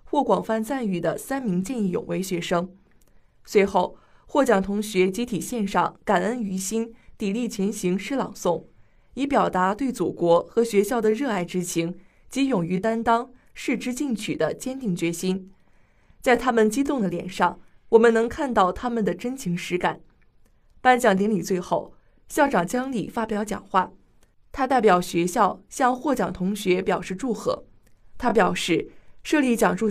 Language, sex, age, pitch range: Chinese, female, 20-39, 185-240 Hz